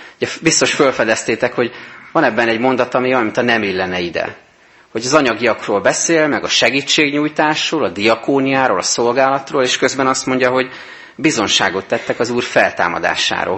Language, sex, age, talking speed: Hungarian, male, 30-49, 160 wpm